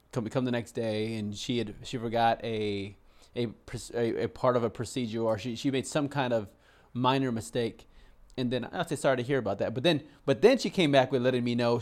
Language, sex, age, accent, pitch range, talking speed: English, male, 30-49, American, 110-140 Hz, 230 wpm